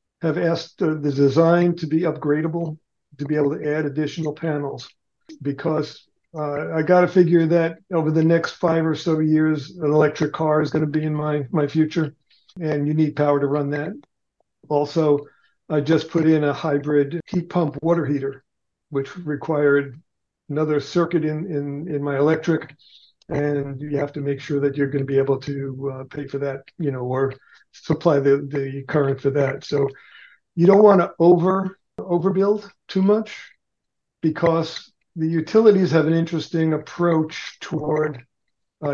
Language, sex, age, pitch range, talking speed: English, male, 50-69, 145-165 Hz, 165 wpm